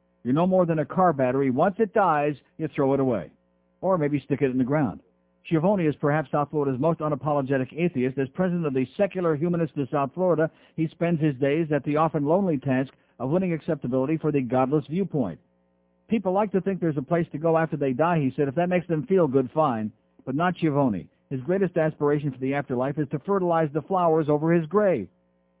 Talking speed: 215 wpm